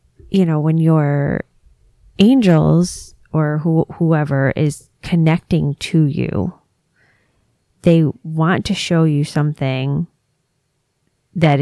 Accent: American